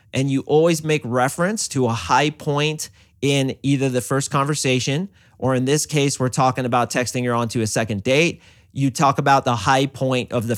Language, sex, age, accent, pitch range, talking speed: English, male, 30-49, American, 120-145 Hz, 200 wpm